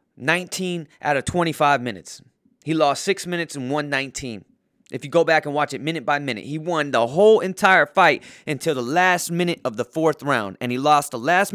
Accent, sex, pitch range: American, male, 115-155 Hz